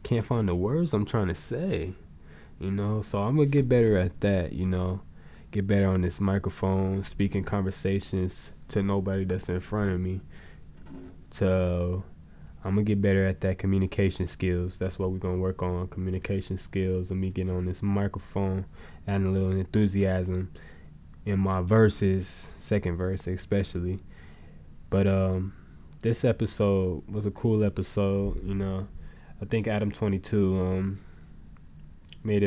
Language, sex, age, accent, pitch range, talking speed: English, male, 20-39, American, 90-100 Hz, 155 wpm